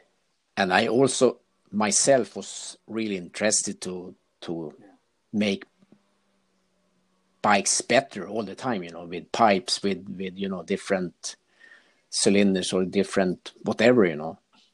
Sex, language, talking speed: male, English, 120 wpm